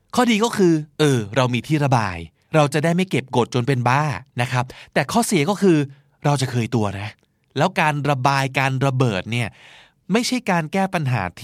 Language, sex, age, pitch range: Thai, male, 20-39, 115-150 Hz